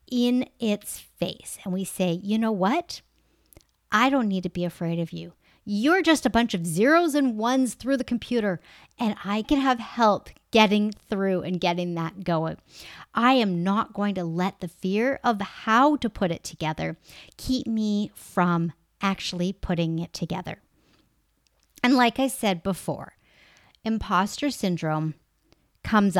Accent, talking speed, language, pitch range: American, 155 wpm, English, 180-230 Hz